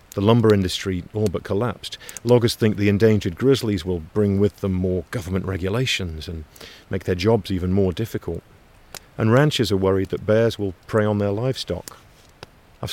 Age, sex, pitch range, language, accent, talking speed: 50-69, male, 95-115 Hz, English, British, 170 wpm